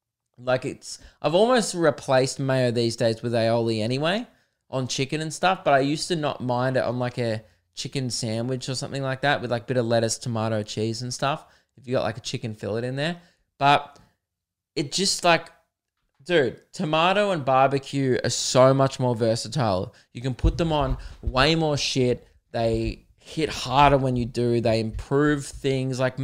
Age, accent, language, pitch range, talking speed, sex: 20-39, Australian, English, 115-145 Hz, 185 wpm, male